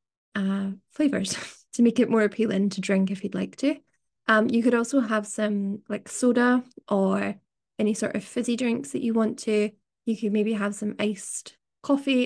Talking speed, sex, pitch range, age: 185 wpm, female, 205-245 Hz, 20-39